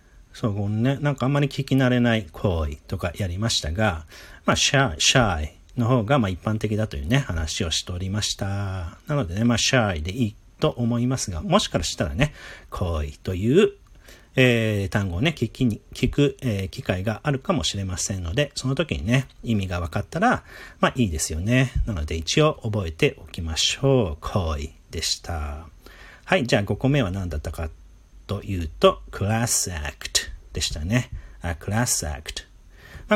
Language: Japanese